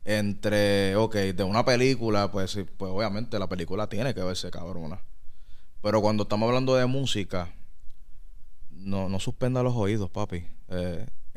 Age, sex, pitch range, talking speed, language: 20-39, male, 95-125 Hz, 145 wpm, Spanish